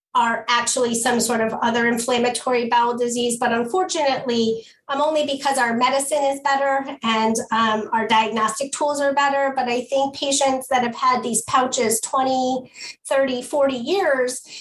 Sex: female